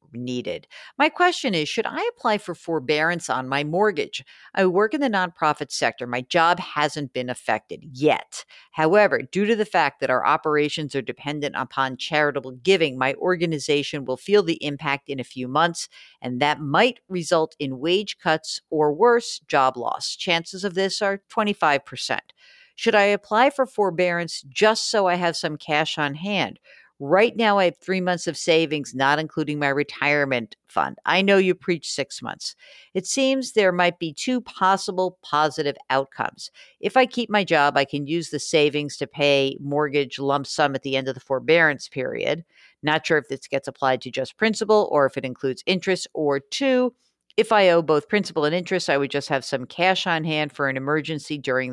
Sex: female